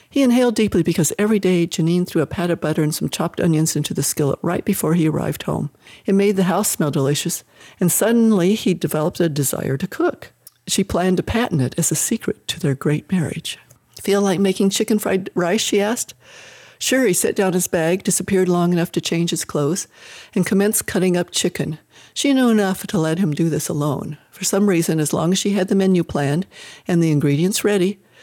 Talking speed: 215 wpm